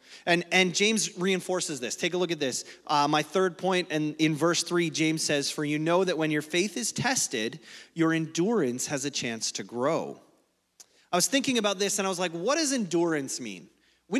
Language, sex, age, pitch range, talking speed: English, male, 30-49, 150-190 Hz, 210 wpm